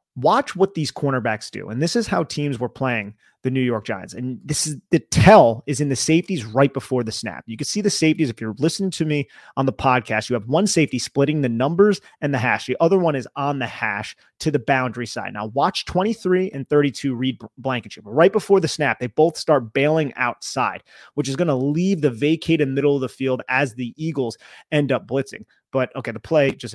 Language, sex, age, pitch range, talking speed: English, male, 30-49, 120-150 Hz, 225 wpm